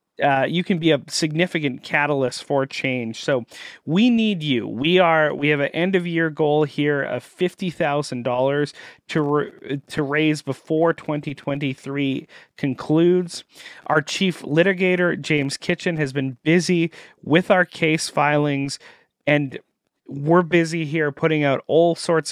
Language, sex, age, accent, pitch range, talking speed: English, male, 30-49, American, 130-165 Hz, 150 wpm